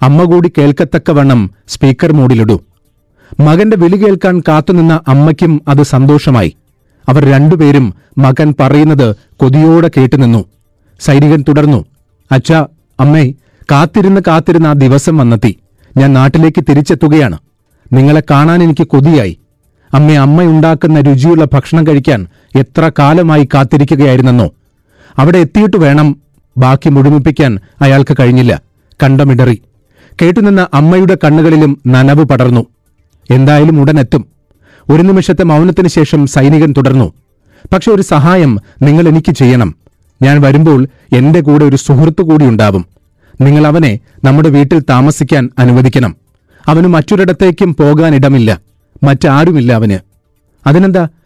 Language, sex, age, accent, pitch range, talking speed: Malayalam, male, 40-59, native, 130-160 Hz, 100 wpm